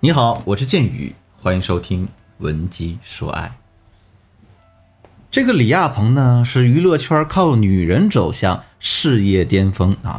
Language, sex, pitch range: Chinese, male, 95-135 Hz